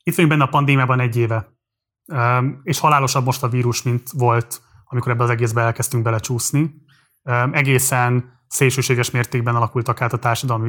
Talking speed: 150 wpm